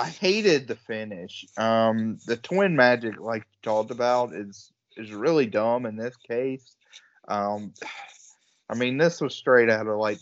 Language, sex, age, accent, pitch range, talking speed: English, male, 30-49, American, 110-150 Hz, 165 wpm